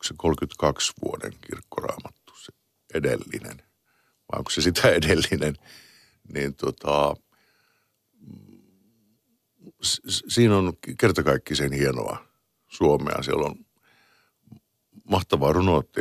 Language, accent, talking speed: Finnish, native, 80 wpm